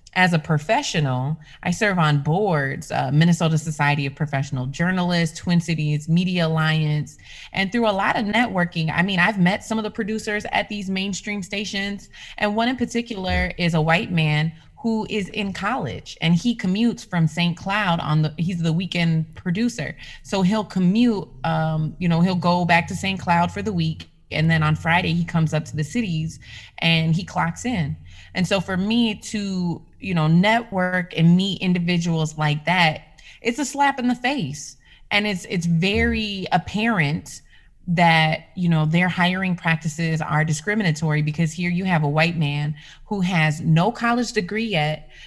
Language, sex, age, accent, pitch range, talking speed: English, female, 20-39, American, 155-200 Hz, 175 wpm